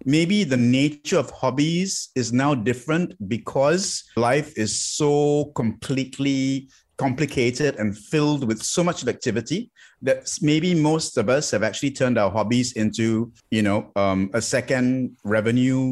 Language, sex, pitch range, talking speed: English, male, 110-135 Hz, 140 wpm